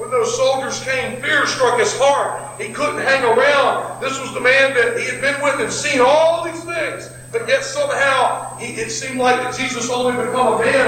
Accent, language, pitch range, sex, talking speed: American, English, 245-295 Hz, male, 215 wpm